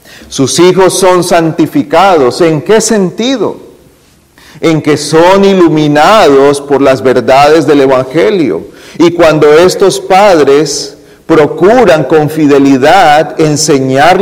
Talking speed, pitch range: 100 wpm, 125-170 Hz